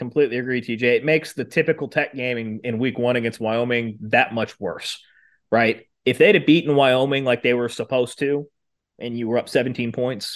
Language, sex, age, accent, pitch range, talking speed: English, male, 30-49, American, 125-180 Hz, 195 wpm